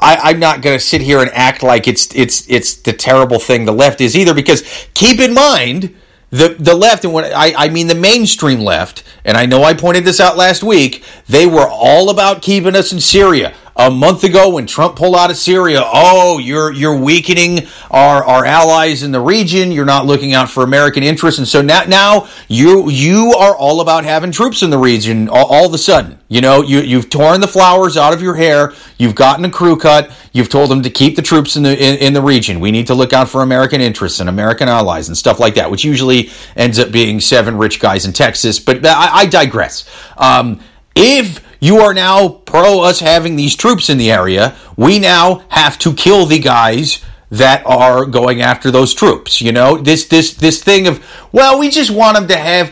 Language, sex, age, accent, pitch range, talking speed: English, male, 40-59, American, 130-175 Hz, 220 wpm